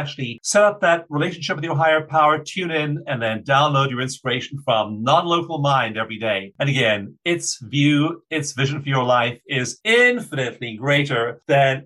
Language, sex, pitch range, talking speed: English, male, 120-155 Hz, 170 wpm